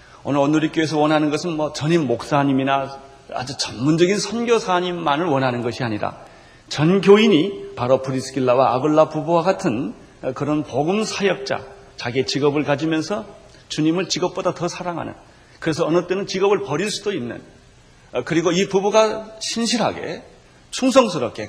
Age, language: 40-59, Korean